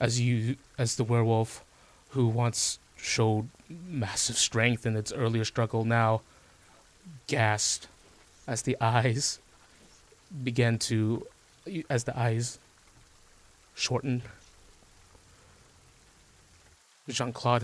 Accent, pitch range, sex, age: American, 110-125 Hz, male, 20-39